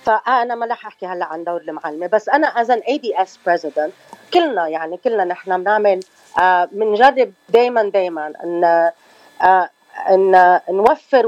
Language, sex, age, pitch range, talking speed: Arabic, female, 30-49, 175-220 Hz, 135 wpm